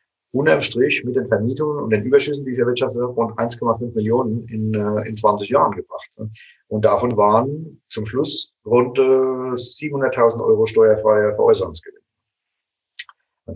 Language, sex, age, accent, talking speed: German, male, 40-59, German, 135 wpm